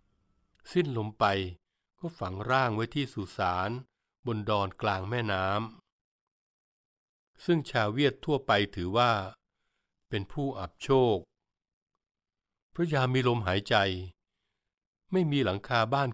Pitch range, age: 100-130 Hz, 60-79